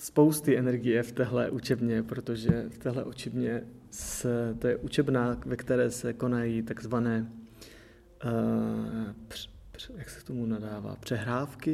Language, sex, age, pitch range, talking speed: Czech, male, 20-39, 115-125 Hz, 120 wpm